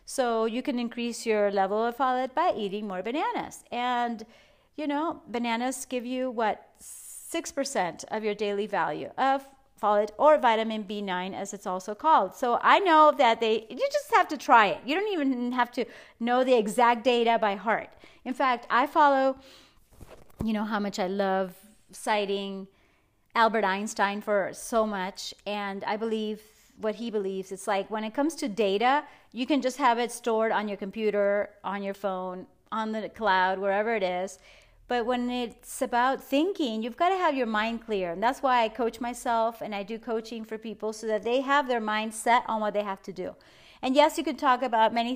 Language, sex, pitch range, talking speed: English, female, 205-255 Hz, 195 wpm